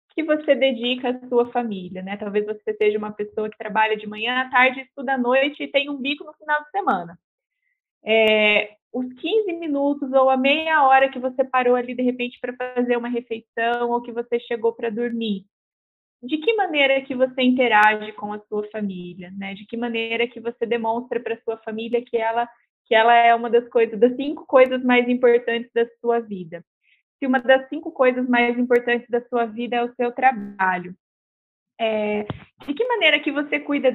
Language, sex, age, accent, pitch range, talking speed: Portuguese, female, 20-39, Brazilian, 220-270 Hz, 195 wpm